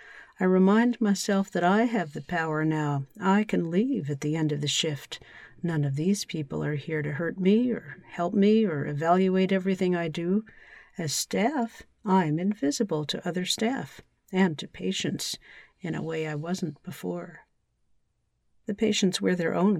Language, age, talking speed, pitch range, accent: English, 50-69, 170 wpm, 155-200 Hz, American